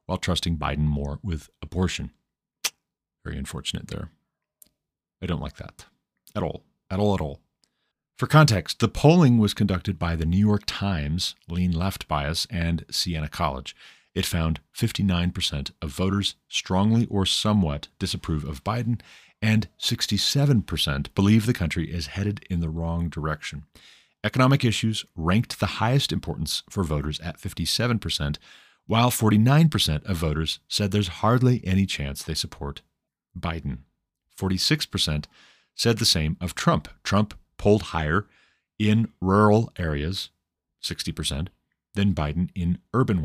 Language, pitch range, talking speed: English, 80-105 Hz, 135 wpm